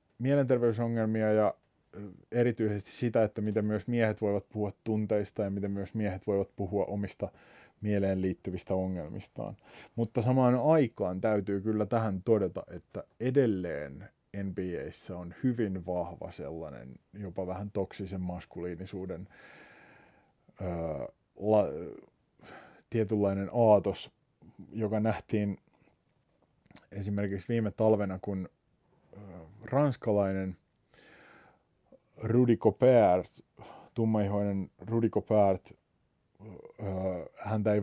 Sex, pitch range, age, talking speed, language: male, 95-110 Hz, 20-39, 90 wpm, Finnish